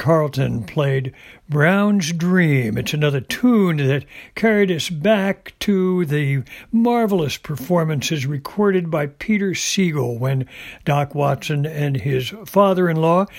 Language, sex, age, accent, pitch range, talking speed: English, male, 60-79, American, 140-185 Hz, 110 wpm